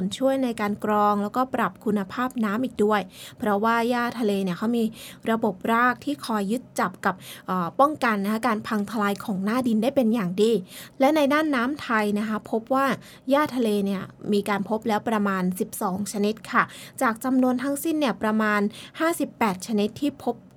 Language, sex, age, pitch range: English, female, 20-39, 210-265 Hz